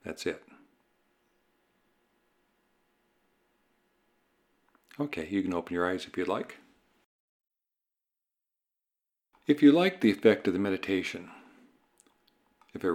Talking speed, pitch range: 95 wpm, 90-120 Hz